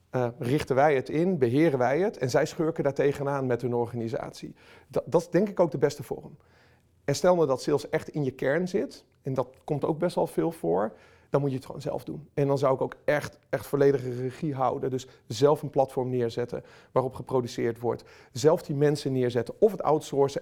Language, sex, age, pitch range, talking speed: Dutch, male, 40-59, 130-155 Hz, 220 wpm